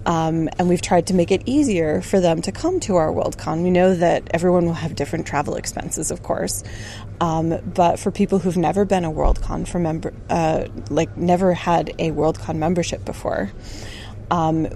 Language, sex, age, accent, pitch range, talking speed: Swedish, female, 20-39, American, 150-185 Hz, 185 wpm